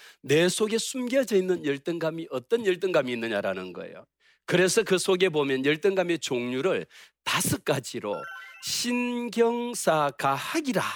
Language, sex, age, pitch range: Korean, male, 40-59, 150-215 Hz